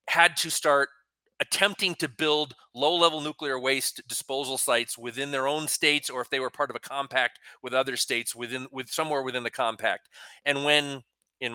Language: English